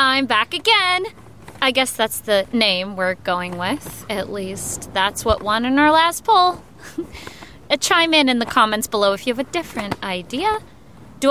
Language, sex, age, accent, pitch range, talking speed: English, female, 30-49, American, 210-280 Hz, 175 wpm